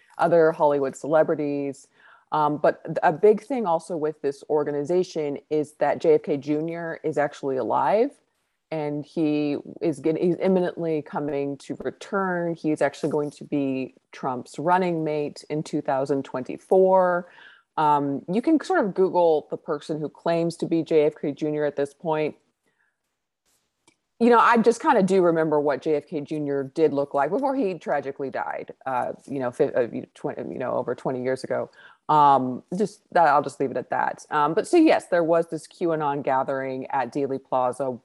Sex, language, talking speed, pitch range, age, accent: female, English, 160 wpm, 145-175 Hz, 30-49, American